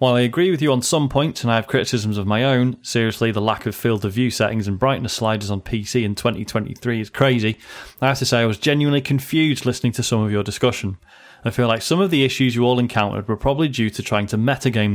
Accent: British